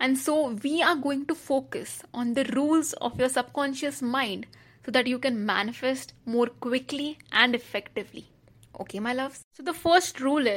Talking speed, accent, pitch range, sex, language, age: 170 wpm, Indian, 210-265 Hz, female, English, 20-39